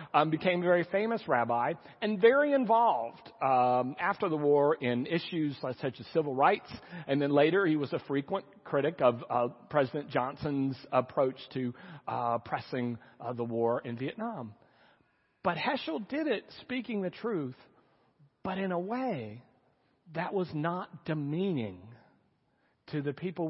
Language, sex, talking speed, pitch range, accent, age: English, male, 150 wpm, 135-190 Hz, American, 40-59